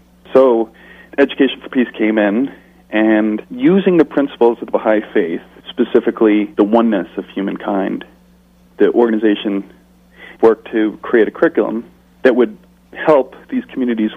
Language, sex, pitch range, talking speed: English, male, 105-125 Hz, 130 wpm